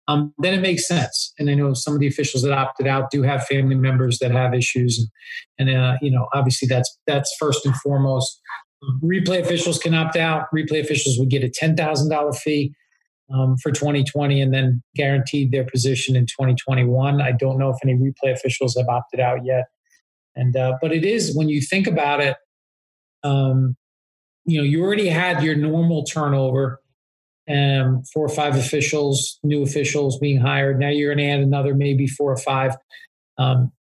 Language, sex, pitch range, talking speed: English, male, 130-155 Hz, 185 wpm